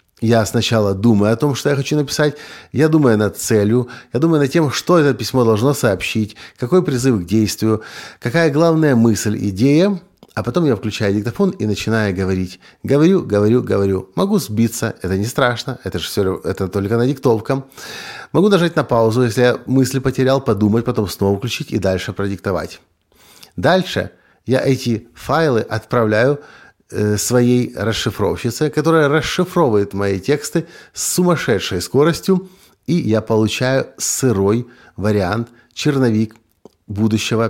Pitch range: 105-145 Hz